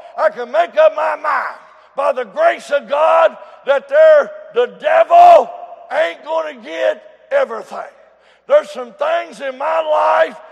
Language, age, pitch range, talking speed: English, 60-79, 265-325 Hz, 145 wpm